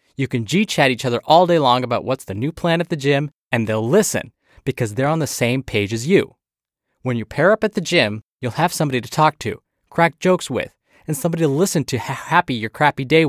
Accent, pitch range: American, 120-165 Hz